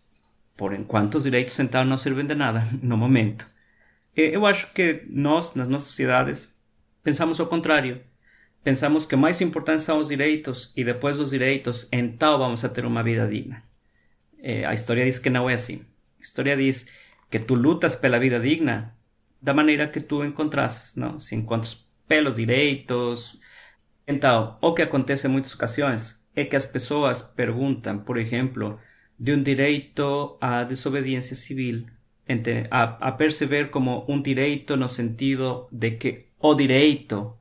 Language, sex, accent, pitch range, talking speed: Portuguese, male, Mexican, 120-150 Hz, 160 wpm